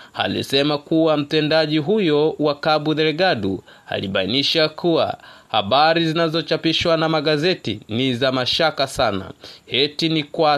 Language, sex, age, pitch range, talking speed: English, male, 30-49, 150-175 Hz, 115 wpm